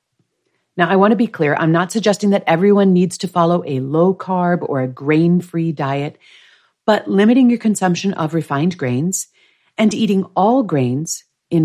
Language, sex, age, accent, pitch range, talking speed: English, female, 50-69, American, 165-225 Hz, 175 wpm